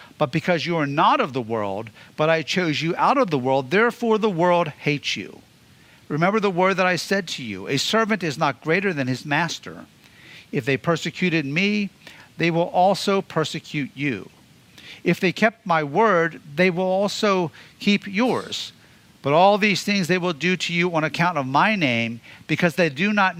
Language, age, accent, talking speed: English, 50-69, American, 190 wpm